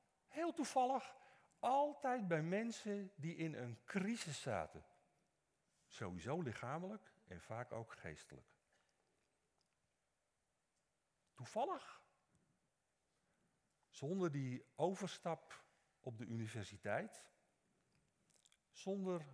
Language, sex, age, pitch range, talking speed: Dutch, male, 50-69, 130-220 Hz, 75 wpm